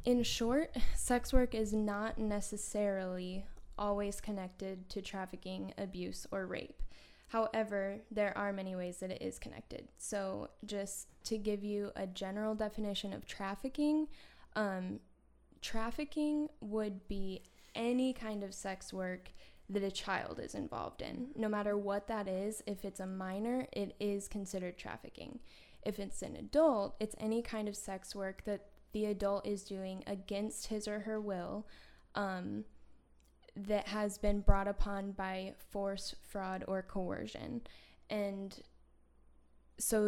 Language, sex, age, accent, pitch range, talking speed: English, female, 10-29, American, 195-220 Hz, 140 wpm